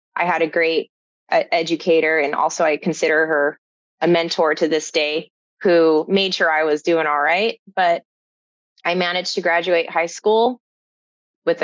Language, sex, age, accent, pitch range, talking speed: English, female, 20-39, American, 155-180 Hz, 165 wpm